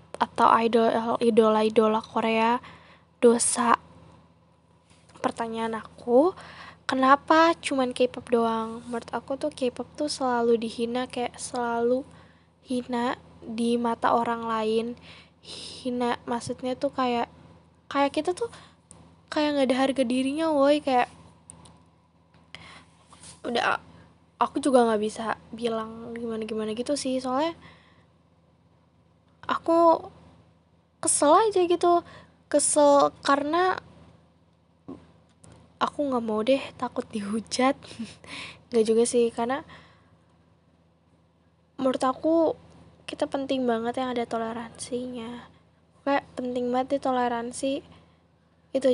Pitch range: 225-265 Hz